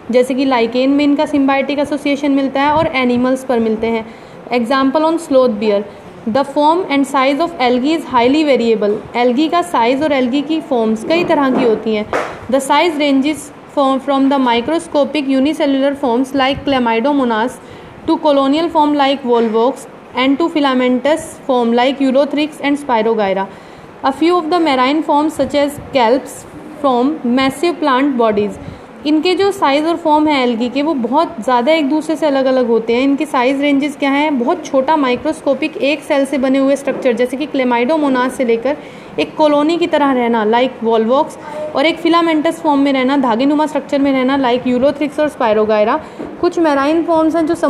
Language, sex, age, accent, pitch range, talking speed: English, female, 20-39, Indian, 250-305 Hz, 155 wpm